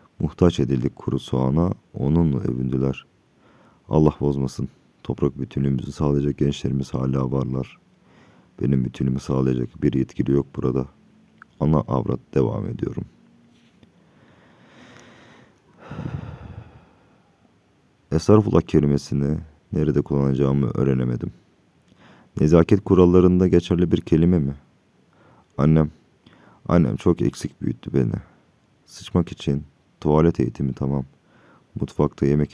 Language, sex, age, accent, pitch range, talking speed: Turkish, male, 40-59, native, 65-85 Hz, 90 wpm